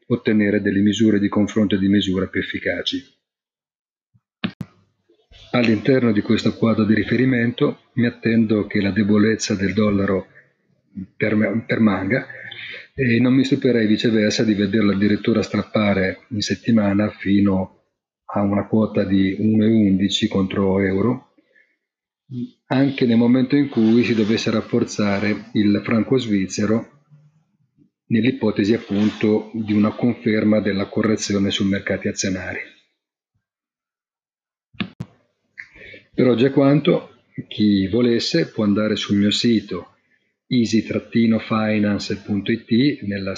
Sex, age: male, 40-59